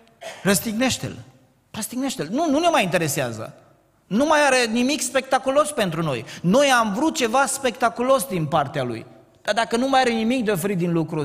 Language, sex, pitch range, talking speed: Romanian, male, 160-230 Hz, 170 wpm